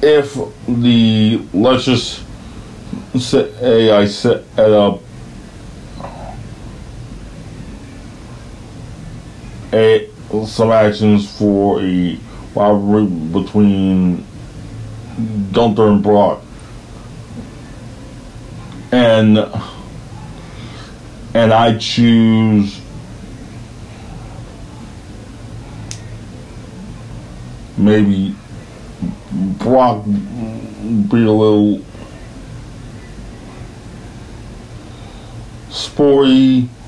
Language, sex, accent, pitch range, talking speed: English, male, American, 100-115 Hz, 50 wpm